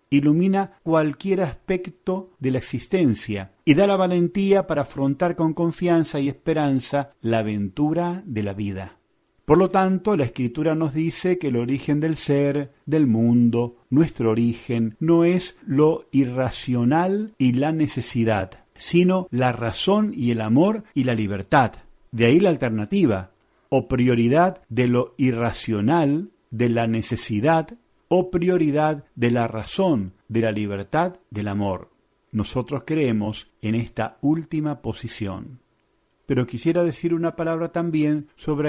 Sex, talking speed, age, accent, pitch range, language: male, 135 wpm, 40-59, Argentinian, 115-165 Hz, Spanish